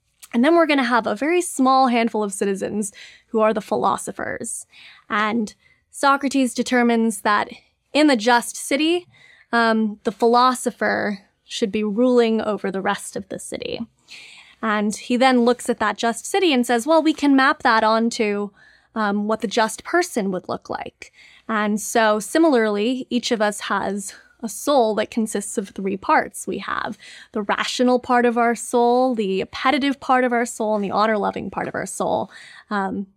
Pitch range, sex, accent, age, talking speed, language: 210-255 Hz, female, American, 20-39, 175 wpm, English